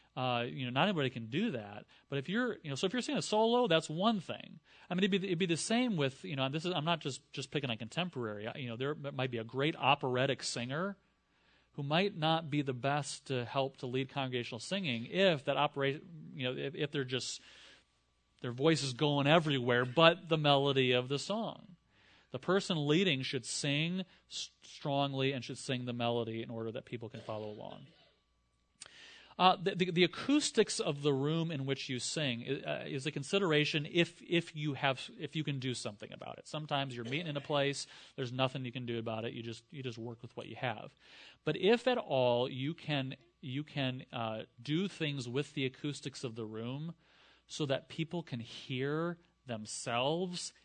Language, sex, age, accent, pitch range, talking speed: English, male, 30-49, American, 125-165 Hz, 210 wpm